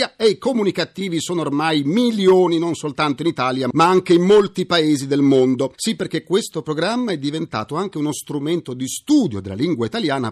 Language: Italian